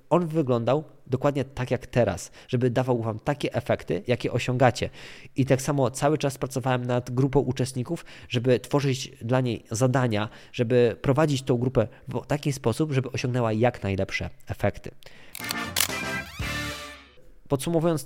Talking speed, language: 135 wpm, Polish